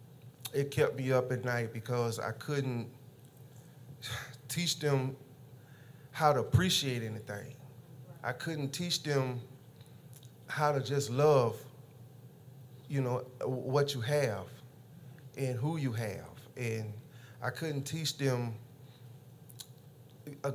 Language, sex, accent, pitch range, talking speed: English, male, American, 120-135 Hz, 110 wpm